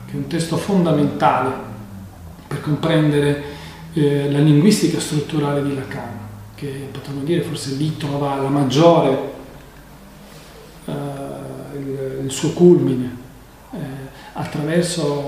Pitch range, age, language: 135-195 Hz, 40-59, Italian